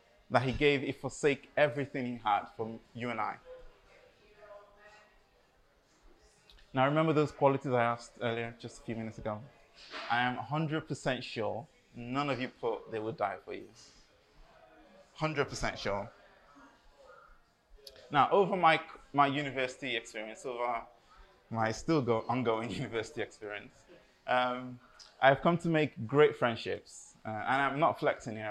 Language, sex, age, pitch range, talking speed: English, male, 20-39, 115-155 Hz, 135 wpm